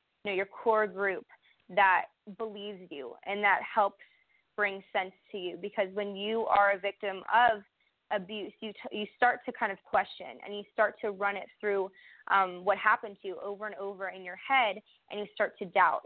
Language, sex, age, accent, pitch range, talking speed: English, female, 20-39, American, 195-215 Hz, 200 wpm